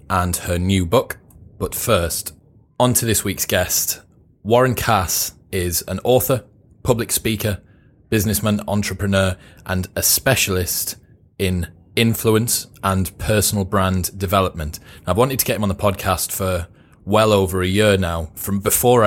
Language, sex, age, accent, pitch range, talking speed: English, male, 20-39, British, 95-110 Hz, 140 wpm